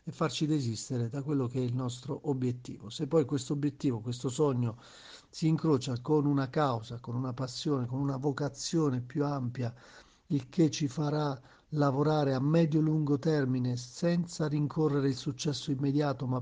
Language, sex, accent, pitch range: Italian, male, native, 125-150 Hz